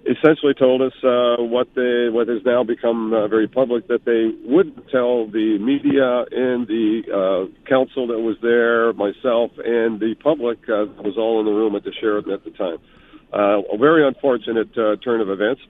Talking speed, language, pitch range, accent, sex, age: 190 wpm, English, 110-130 Hz, American, male, 50-69